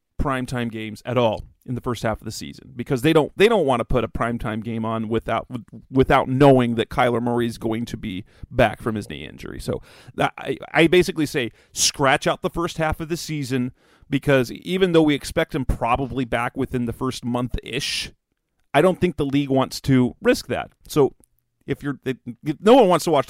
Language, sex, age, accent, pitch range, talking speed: English, male, 40-59, American, 120-150 Hz, 210 wpm